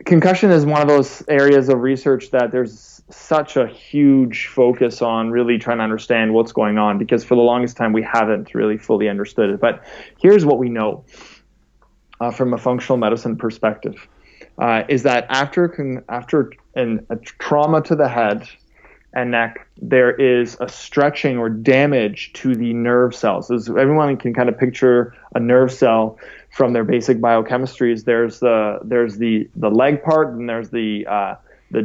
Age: 20-39